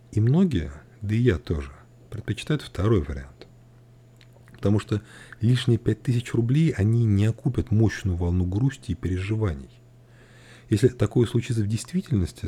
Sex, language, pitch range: male, Russian, 95-120 Hz